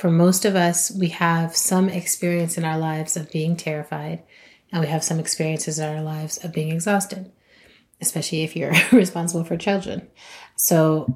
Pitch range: 150-175 Hz